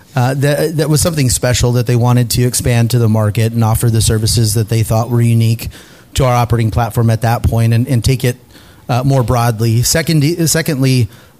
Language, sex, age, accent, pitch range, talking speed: English, male, 30-49, American, 115-135 Hz, 210 wpm